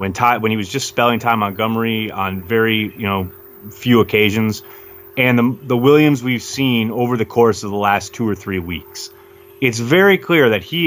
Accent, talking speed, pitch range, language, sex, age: American, 200 wpm, 100-140 Hz, English, male, 30-49